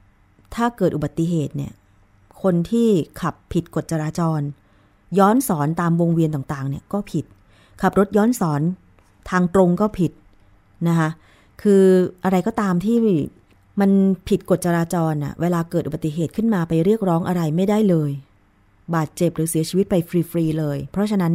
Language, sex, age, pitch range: Thai, female, 20-39, 145-190 Hz